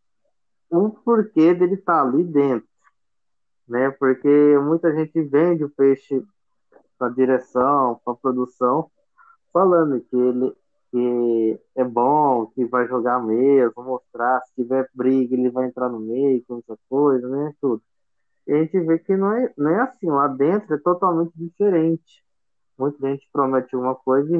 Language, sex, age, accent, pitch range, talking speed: Portuguese, male, 20-39, Brazilian, 130-160 Hz, 155 wpm